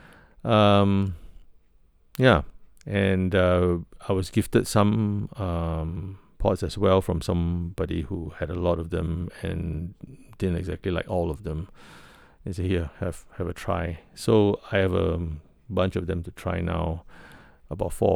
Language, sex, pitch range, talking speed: English, male, 85-95 Hz, 155 wpm